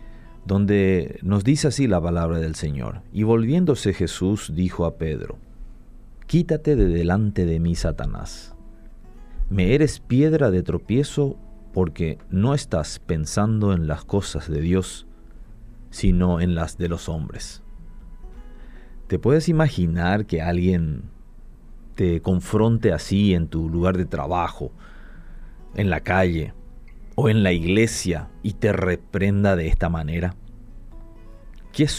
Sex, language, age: male, Spanish, 40-59